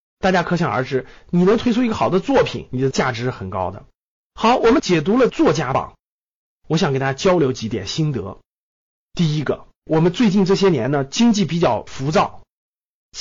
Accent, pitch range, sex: native, 140-210 Hz, male